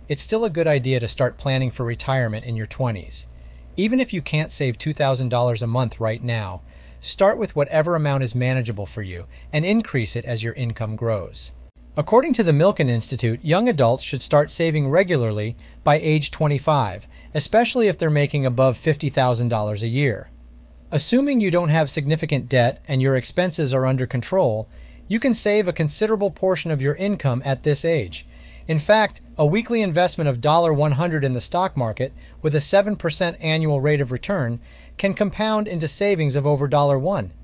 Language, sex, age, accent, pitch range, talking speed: English, male, 30-49, American, 120-170 Hz, 175 wpm